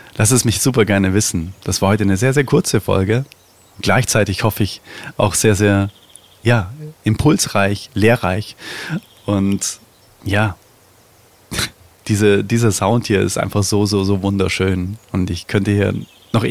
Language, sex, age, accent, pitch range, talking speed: German, male, 30-49, German, 100-120 Hz, 140 wpm